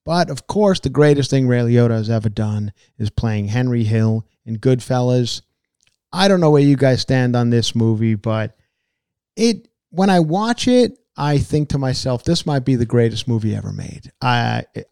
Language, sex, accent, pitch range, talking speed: English, male, American, 115-130 Hz, 185 wpm